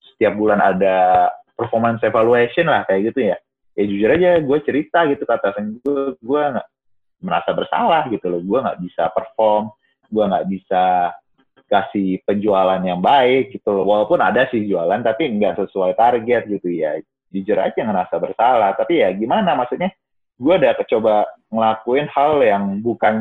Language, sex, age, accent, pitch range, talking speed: Indonesian, male, 30-49, native, 100-130 Hz, 160 wpm